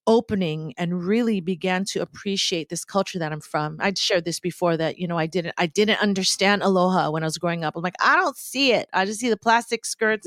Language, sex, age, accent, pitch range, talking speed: English, female, 40-59, American, 175-220 Hz, 240 wpm